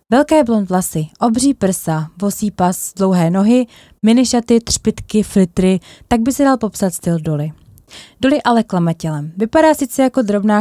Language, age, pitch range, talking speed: Czech, 20-39, 170-230 Hz, 145 wpm